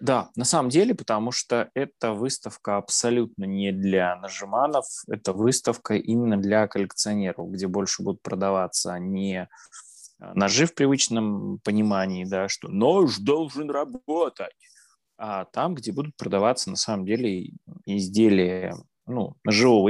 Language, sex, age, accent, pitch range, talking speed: Russian, male, 20-39, native, 100-125 Hz, 125 wpm